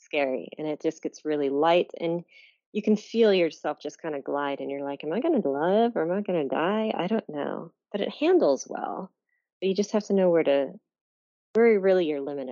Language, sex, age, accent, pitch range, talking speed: English, female, 30-49, American, 145-195 Hz, 235 wpm